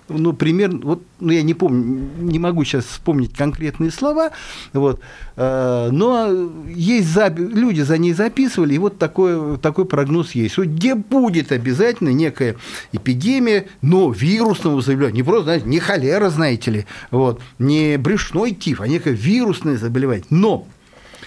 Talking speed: 150 wpm